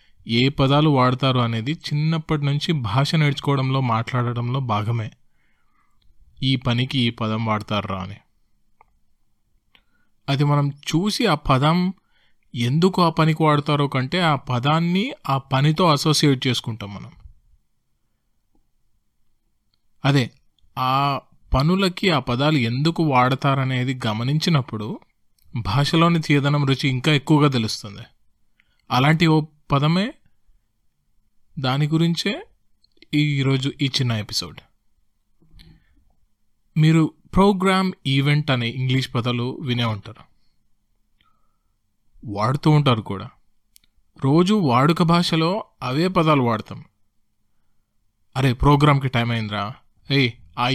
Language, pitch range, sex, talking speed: Telugu, 115-155 Hz, male, 90 wpm